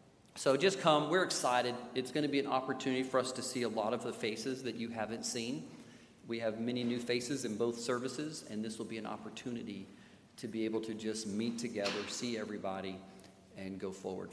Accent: American